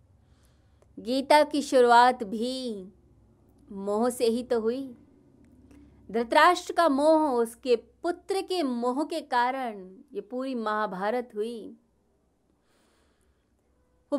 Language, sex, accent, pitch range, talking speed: Hindi, female, native, 210-285 Hz, 95 wpm